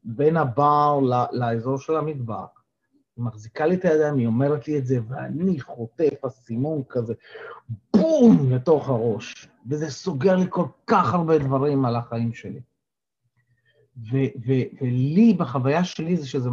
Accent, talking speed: native, 140 wpm